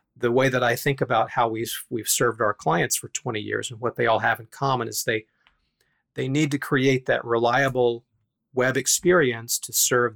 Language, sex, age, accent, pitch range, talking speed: English, male, 40-59, American, 115-140 Hz, 200 wpm